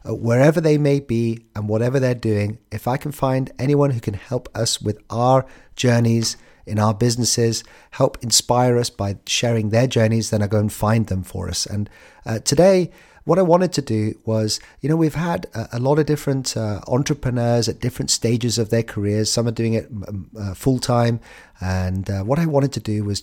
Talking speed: 210 wpm